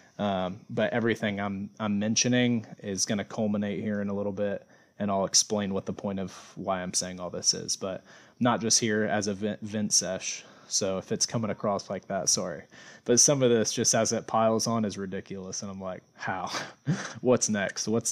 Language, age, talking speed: English, 20-39, 210 wpm